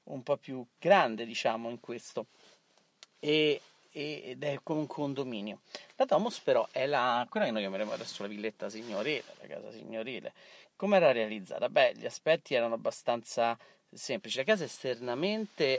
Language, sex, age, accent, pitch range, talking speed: Italian, male, 40-59, native, 120-180 Hz, 160 wpm